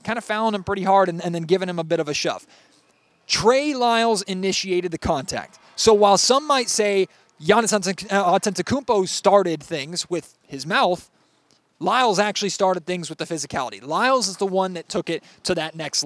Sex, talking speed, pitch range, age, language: male, 185 wpm, 165-205 Hz, 20-39, English